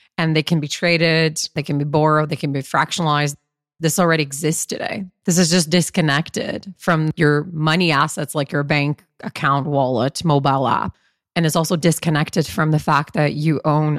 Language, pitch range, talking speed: English, 150-180 Hz, 180 wpm